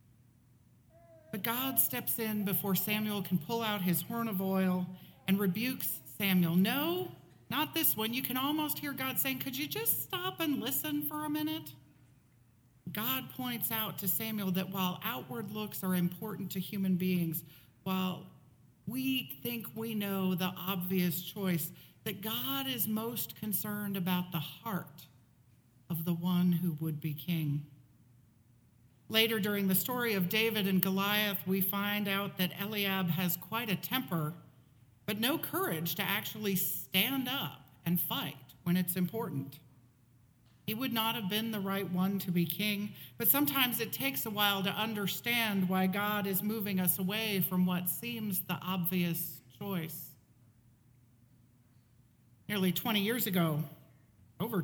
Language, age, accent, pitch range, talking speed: English, 50-69, American, 160-220 Hz, 150 wpm